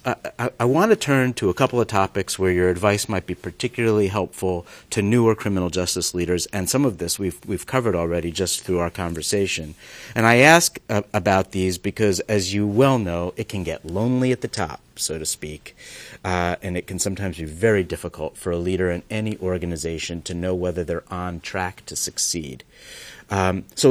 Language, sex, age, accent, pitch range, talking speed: English, male, 40-59, American, 90-115 Hz, 200 wpm